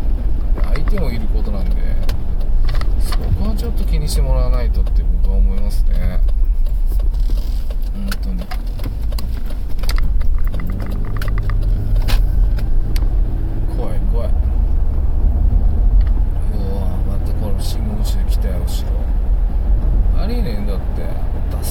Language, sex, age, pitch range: Japanese, male, 20-39, 70-90 Hz